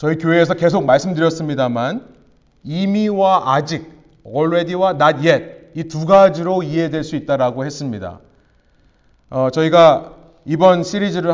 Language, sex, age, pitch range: Korean, male, 30-49, 145-205 Hz